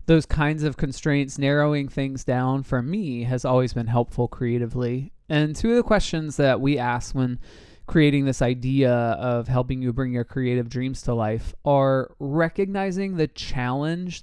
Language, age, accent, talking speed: English, 20-39, American, 165 wpm